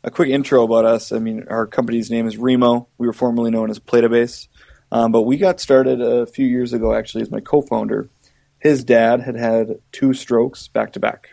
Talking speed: 195 wpm